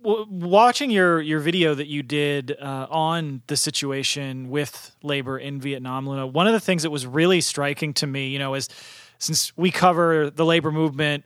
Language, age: English, 30-49